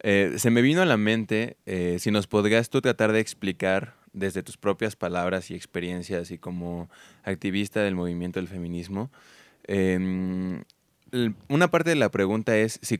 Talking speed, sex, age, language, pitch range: 165 wpm, male, 20-39, Spanish, 90-115 Hz